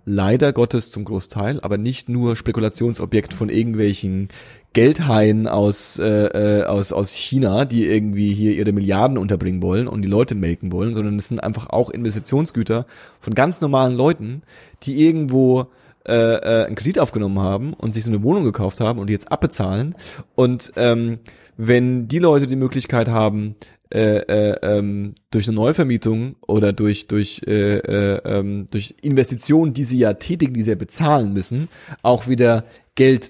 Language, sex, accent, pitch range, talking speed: German, male, German, 105-130 Hz, 155 wpm